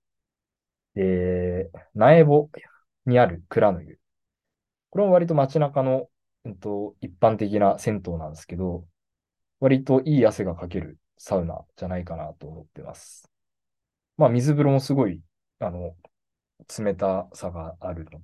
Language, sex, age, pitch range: Japanese, male, 20-39, 85-130 Hz